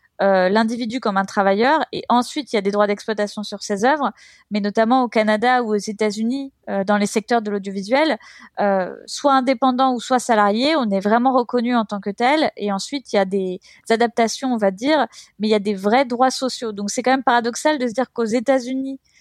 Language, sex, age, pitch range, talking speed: French, female, 20-39, 205-255 Hz, 220 wpm